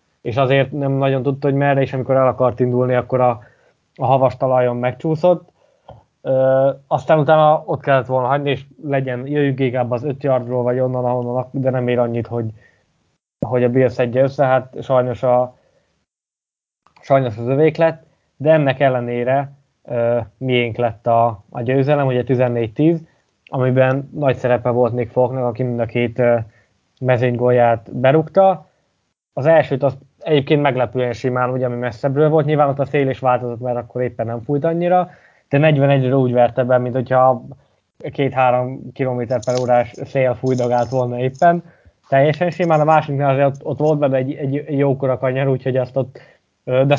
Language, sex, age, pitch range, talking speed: Hungarian, male, 20-39, 125-140 Hz, 155 wpm